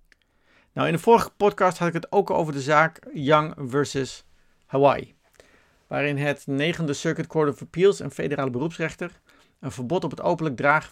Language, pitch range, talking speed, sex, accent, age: Dutch, 130-165 Hz, 165 wpm, male, Dutch, 50-69